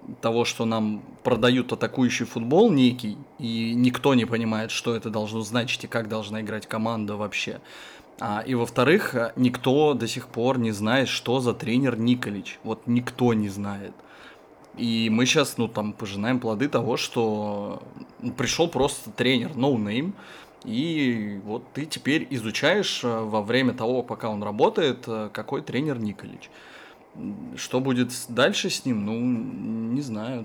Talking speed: 150 wpm